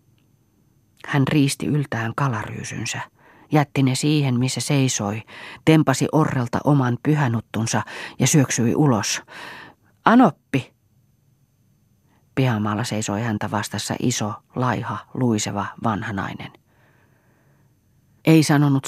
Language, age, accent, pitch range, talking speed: Finnish, 30-49, native, 115-140 Hz, 85 wpm